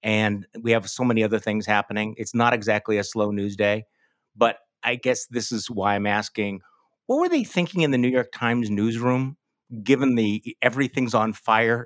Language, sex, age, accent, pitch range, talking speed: English, male, 50-69, American, 120-170 Hz, 190 wpm